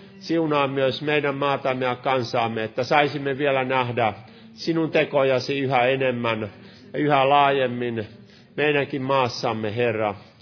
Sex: male